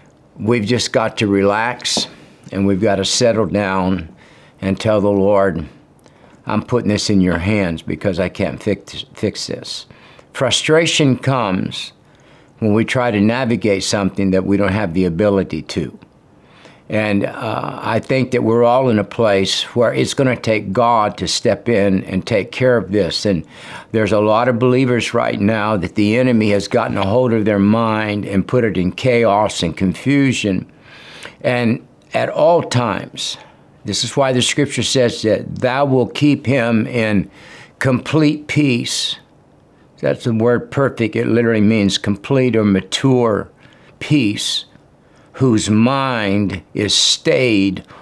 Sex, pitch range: male, 100-130 Hz